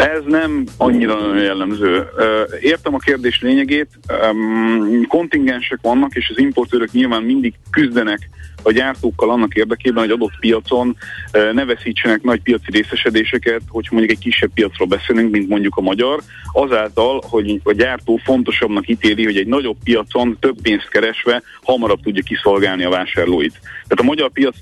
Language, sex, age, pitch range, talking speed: Hungarian, male, 40-59, 100-130 Hz, 145 wpm